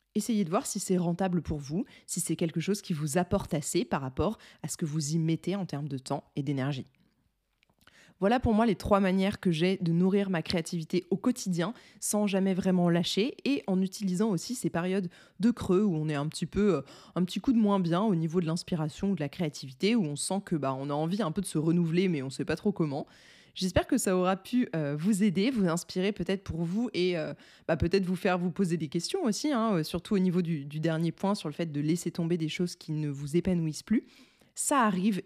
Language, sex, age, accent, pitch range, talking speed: French, female, 20-39, French, 165-200 Hz, 240 wpm